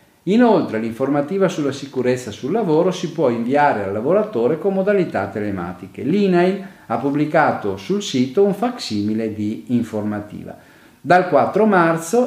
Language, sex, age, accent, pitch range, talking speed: Italian, male, 40-59, native, 110-165 Hz, 125 wpm